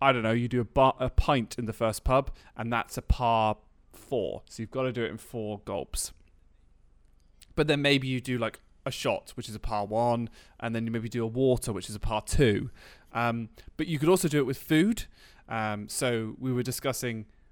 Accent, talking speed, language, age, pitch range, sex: British, 225 wpm, English, 20-39, 110-140 Hz, male